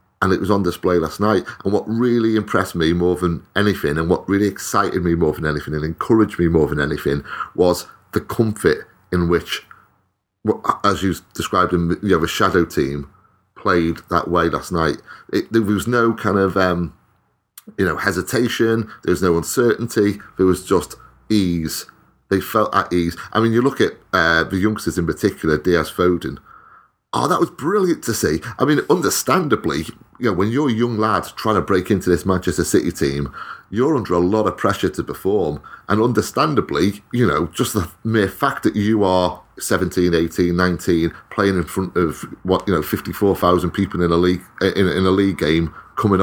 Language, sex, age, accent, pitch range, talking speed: English, male, 30-49, British, 85-105 Hz, 190 wpm